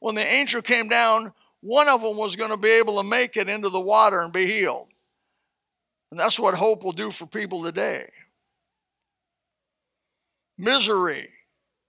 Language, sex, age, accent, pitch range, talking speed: English, male, 60-79, American, 170-220 Hz, 160 wpm